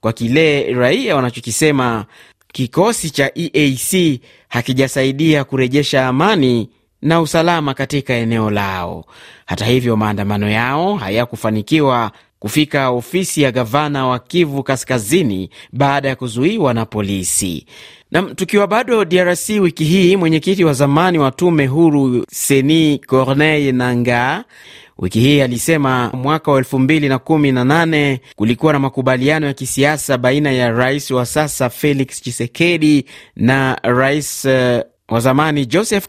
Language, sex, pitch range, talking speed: Swahili, male, 115-150 Hz, 120 wpm